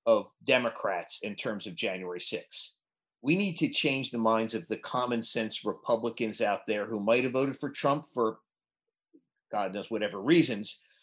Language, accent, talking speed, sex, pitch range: English, American, 170 wpm, male, 115-160 Hz